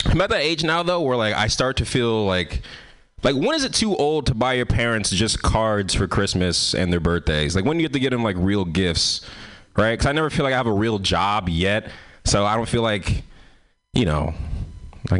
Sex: male